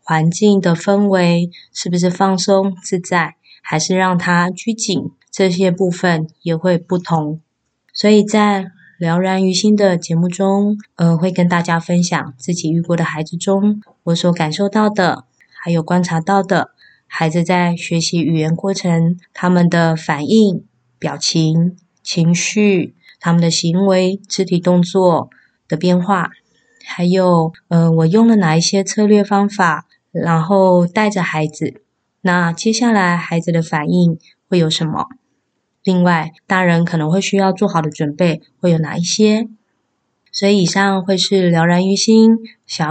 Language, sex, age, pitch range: Chinese, female, 20-39, 165-195 Hz